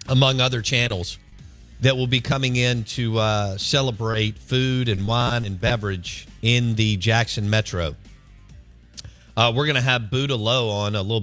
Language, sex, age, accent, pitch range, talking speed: English, male, 50-69, American, 90-115 Hz, 160 wpm